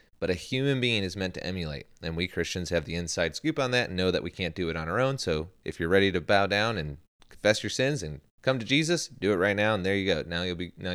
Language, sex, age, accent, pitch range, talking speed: English, male, 30-49, American, 85-105 Hz, 285 wpm